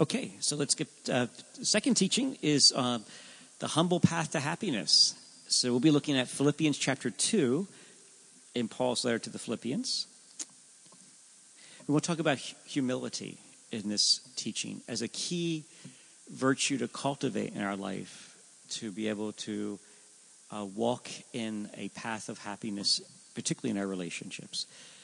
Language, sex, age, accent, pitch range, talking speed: English, male, 40-59, American, 110-155 Hz, 140 wpm